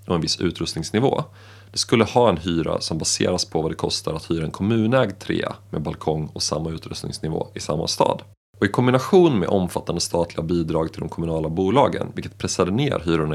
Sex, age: male, 30-49